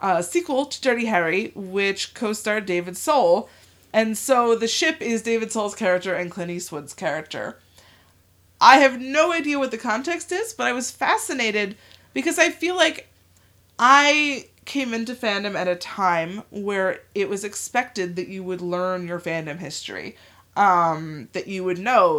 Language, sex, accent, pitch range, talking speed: English, female, American, 180-255 Hz, 160 wpm